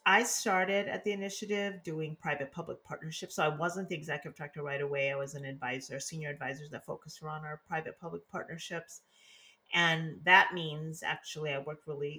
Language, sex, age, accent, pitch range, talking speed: English, female, 30-49, American, 140-170 Hz, 170 wpm